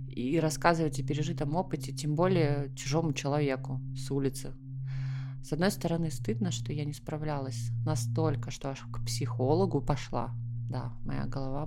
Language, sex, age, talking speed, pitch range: Russian, female, 20-39, 145 wpm, 130-150 Hz